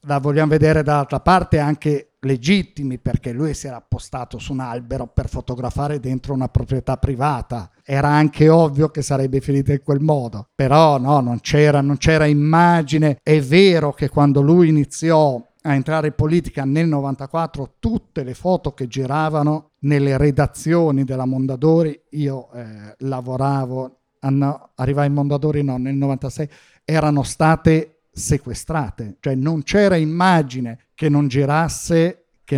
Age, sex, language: 50-69, male, Italian